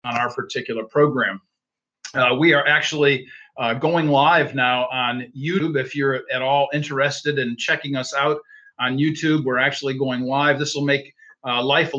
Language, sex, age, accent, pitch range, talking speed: English, male, 50-69, American, 125-150 Hz, 175 wpm